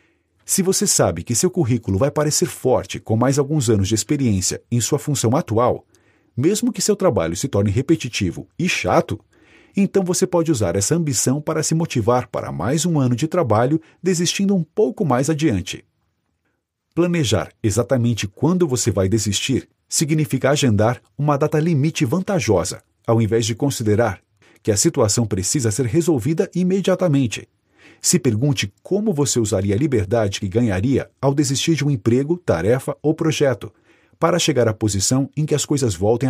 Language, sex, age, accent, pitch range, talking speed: Portuguese, male, 40-59, Brazilian, 110-160 Hz, 160 wpm